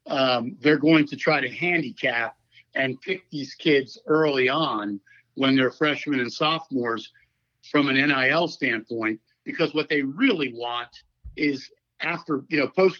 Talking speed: 150 wpm